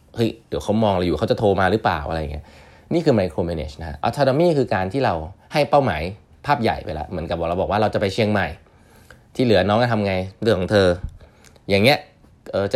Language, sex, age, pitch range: Thai, male, 20-39, 85-115 Hz